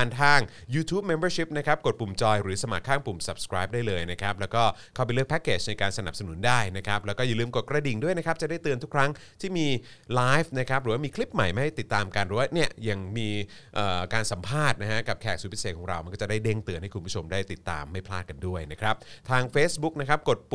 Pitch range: 100-140 Hz